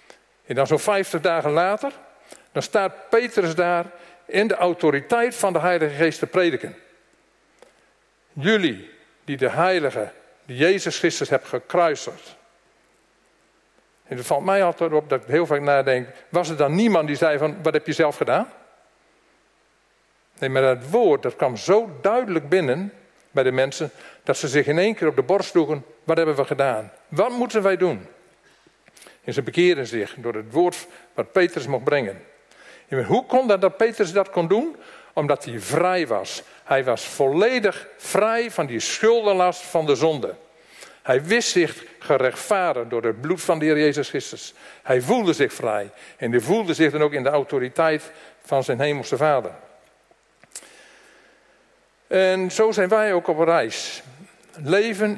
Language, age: Dutch, 50-69